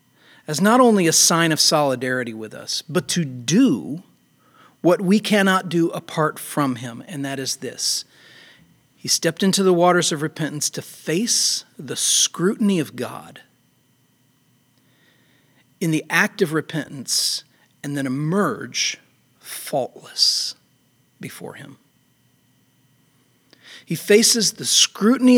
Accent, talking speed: American, 120 wpm